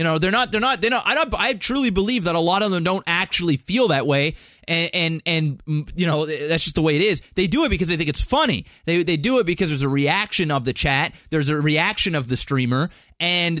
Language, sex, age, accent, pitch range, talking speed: English, male, 30-49, American, 155-200 Hz, 265 wpm